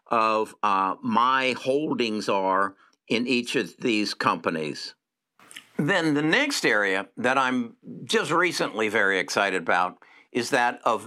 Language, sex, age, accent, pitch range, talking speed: English, male, 60-79, American, 110-145 Hz, 130 wpm